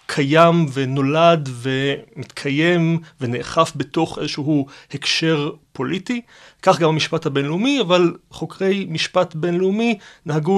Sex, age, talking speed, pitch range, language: male, 30-49, 95 wpm, 145-175 Hz, Hebrew